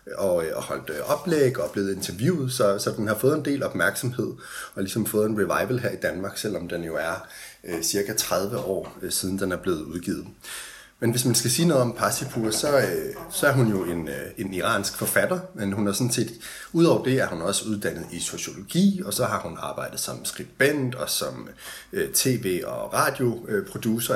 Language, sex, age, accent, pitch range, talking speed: Danish, male, 30-49, native, 105-130 Hz, 190 wpm